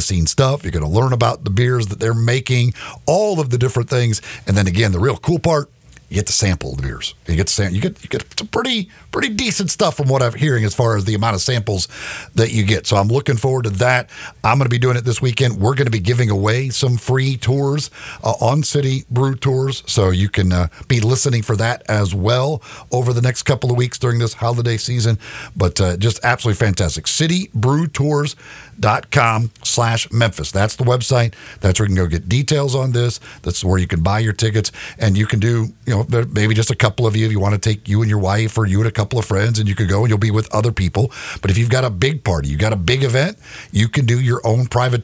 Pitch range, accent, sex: 105-130 Hz, American, male